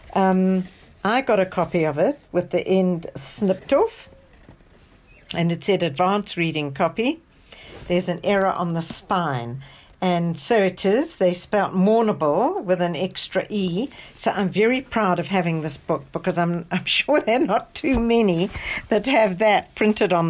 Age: 60-79